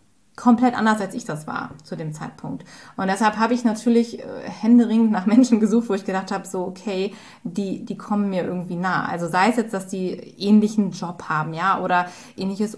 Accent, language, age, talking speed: German, German, 20-39, 200 wpm